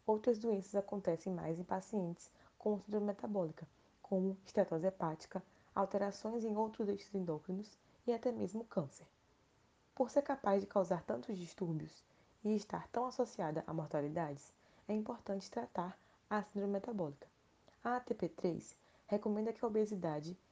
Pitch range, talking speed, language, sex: 180-215 Hz, 135 wpm, Portuguese, female